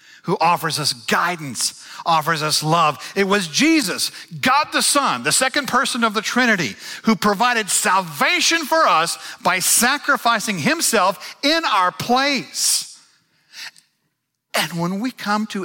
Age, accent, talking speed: 50-69, American, 135 wpm